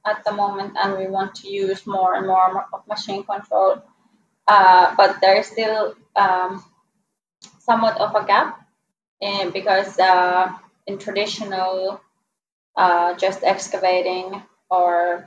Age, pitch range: 20-39, 190-210 Hz